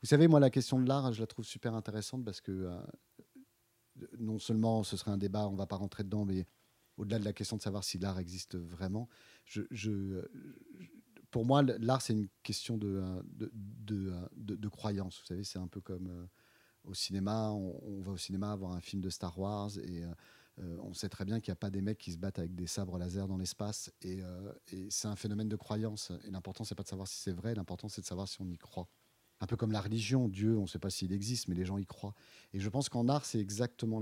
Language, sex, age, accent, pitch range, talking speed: French, male, 40-59, French, 95-115 Hz, 255 wpm